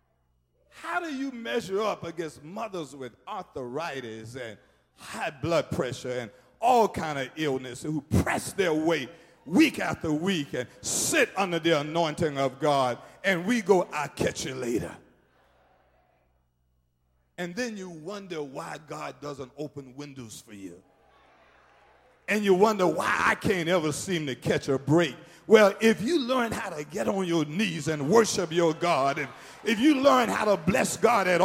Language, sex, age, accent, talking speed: English, male, 50-69, American, 160 wpm